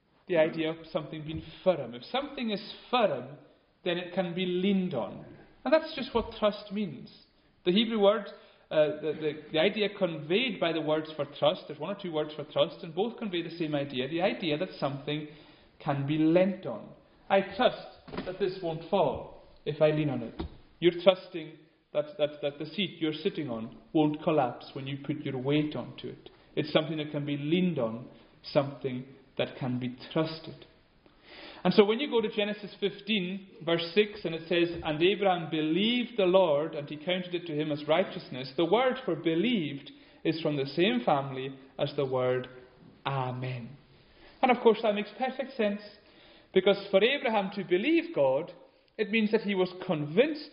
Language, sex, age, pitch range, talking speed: English, male, 40-59, 145-200 Hz, 185 wpm